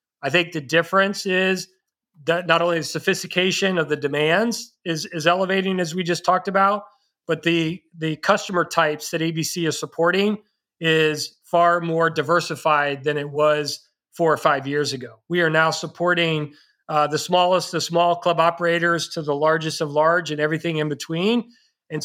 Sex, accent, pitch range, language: male, American, 160-190 Hz, English